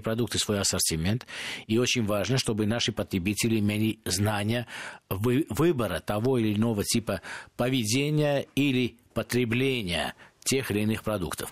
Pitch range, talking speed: 105-130 Hz, 120 wpm